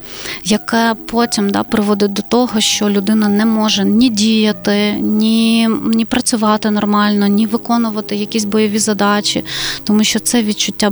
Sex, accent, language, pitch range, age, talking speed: female, native, Ukrainian, 205-235 Hz, 30-49, 135 wpm